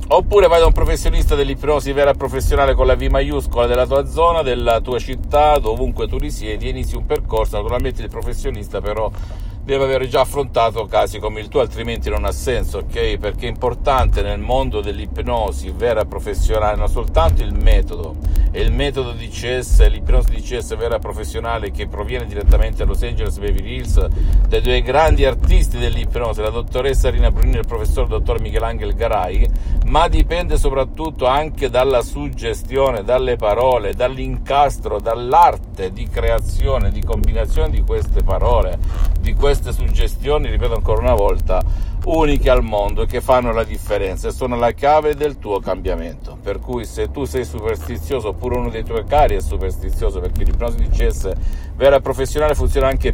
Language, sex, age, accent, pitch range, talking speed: Italian, male, 50-69, native, 85-130 Hz, 170 wpm